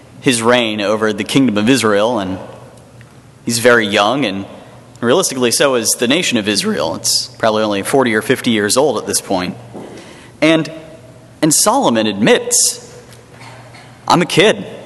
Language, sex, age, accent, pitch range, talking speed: English, male, 30-49, American, 115-140 Hz, 150 wpm